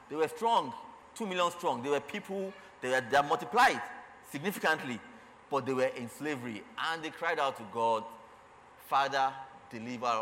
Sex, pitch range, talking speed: male, 110-140 Hz, 160 wpm